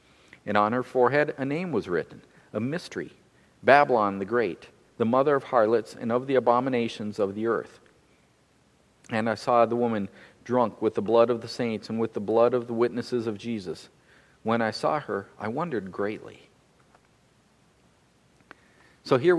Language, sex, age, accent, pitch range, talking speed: English, male, 50-69, American, 115-130 Hz, 165 wpm